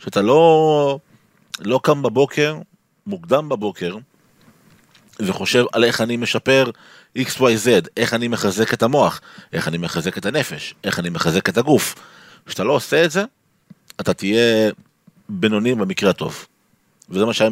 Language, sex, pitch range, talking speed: Hebrew, male, 95-125 Hz, 140 wpm